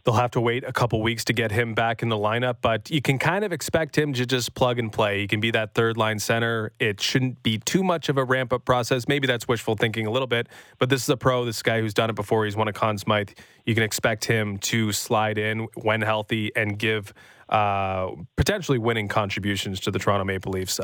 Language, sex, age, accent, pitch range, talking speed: English, male, 20-39, American, 110-130 Hz, 250 wpm